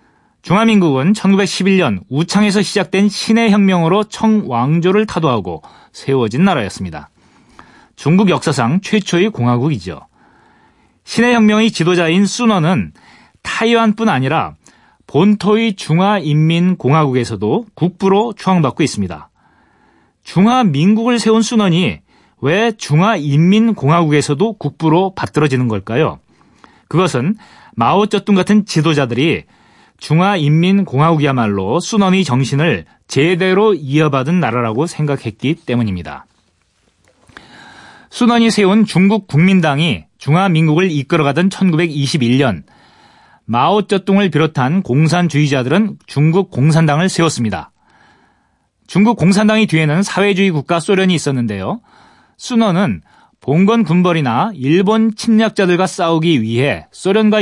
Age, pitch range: 40-59, 145-205 Hz